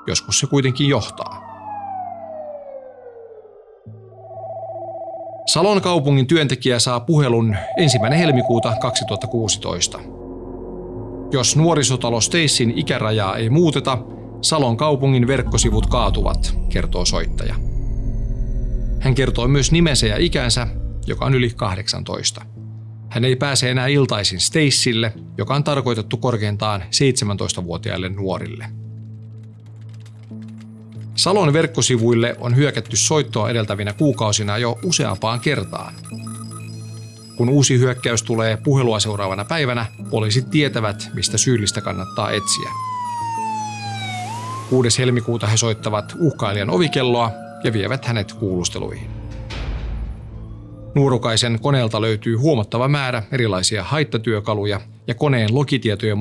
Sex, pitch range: male, 110-135 Hz